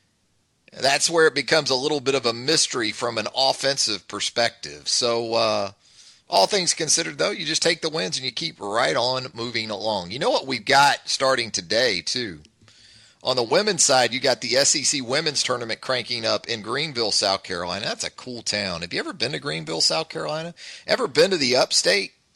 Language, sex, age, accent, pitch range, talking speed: English, male, 30-49, American, 110-160 Hz, 195 wpm